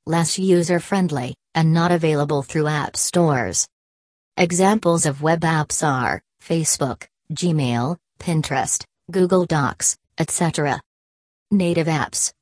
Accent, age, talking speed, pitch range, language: American, 40-59, 100 wpm, 145-175 Hz, English